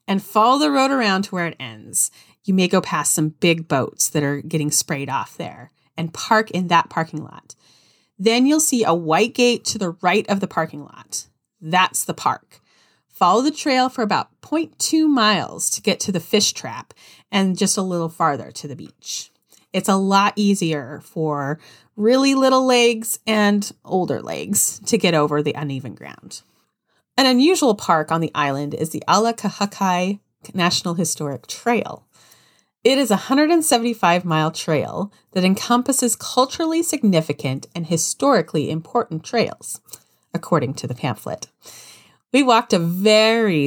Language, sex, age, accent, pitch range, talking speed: English, female, 30-49, American, 155-225 Hz, 160 wpm